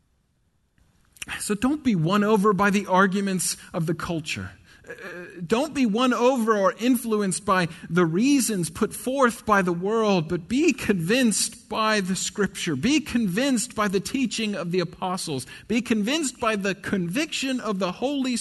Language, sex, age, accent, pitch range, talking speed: English, male, 40-59, American, 160-215 Hz, 155 wpm